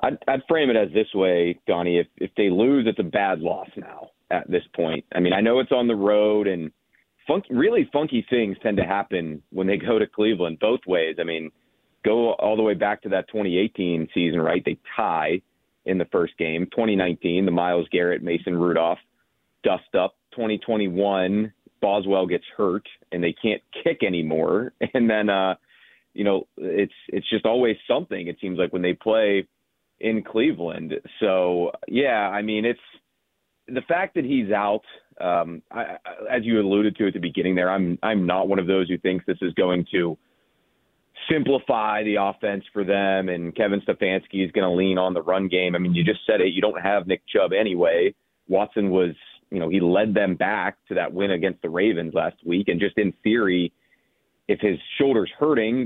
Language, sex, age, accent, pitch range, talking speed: English, male, 30-49, American, 90-105 Hz, 195 wpm